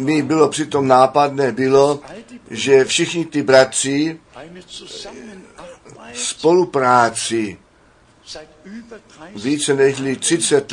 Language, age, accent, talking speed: Czech, 60-79, native, 75 wpm